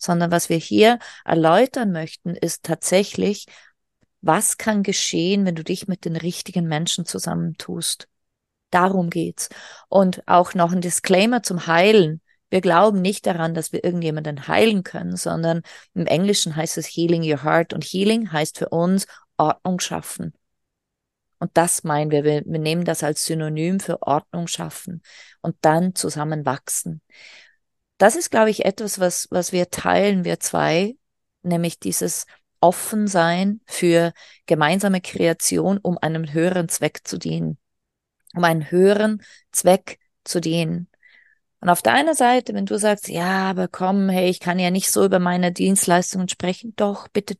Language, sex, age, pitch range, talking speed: German, female, 30-49, 165-200 Hz, 150 wpm